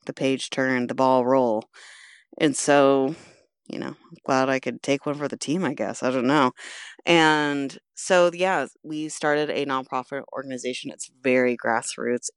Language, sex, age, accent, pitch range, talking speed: English, female, 30-49, American, 130-155 Hz, 170 wpm